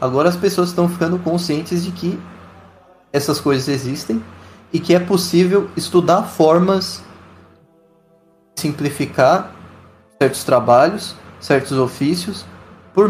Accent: Brazilian